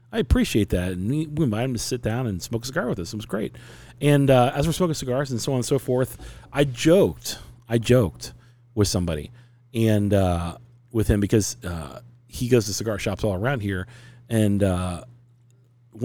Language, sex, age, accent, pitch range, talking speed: English, male, 40-59, American, 95-120 Hz, 200 wpm